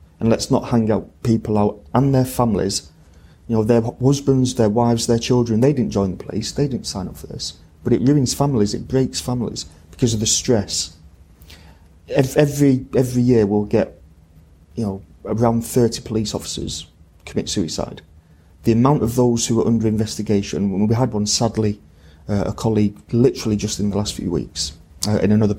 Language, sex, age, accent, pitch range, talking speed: English, male, 30-49, British, 80-115 Hz, 185 wpm